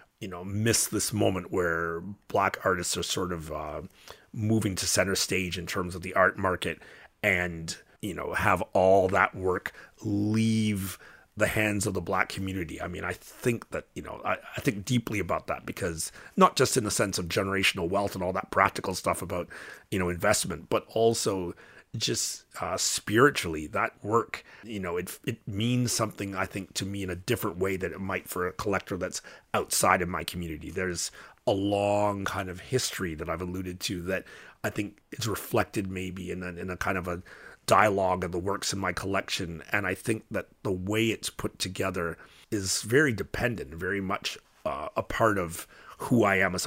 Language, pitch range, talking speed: English, 90-105 Hz, 195 wpm